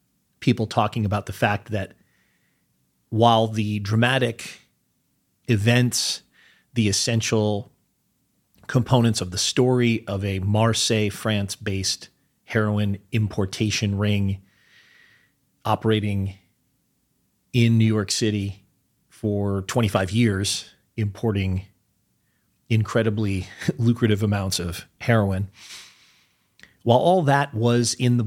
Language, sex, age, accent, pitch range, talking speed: English, male, 40-59, American, 95-115 Hz, 90 wpm